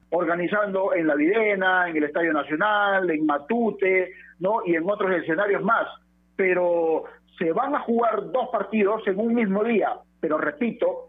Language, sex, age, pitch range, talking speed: Spanish, male, 50-69, 175-255 Hz, 155 wpm